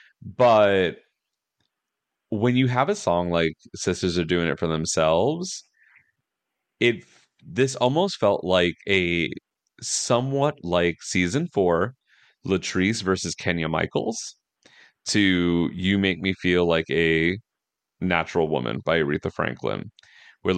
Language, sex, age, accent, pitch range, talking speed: English, male, 30-49, American, 85-110 Hz, 115 wpm